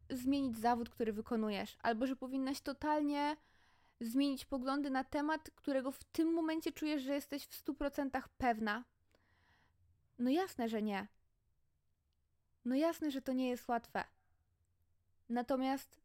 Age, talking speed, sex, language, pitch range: 20-39, 125 wpm, female, Polish, 215-285 Hz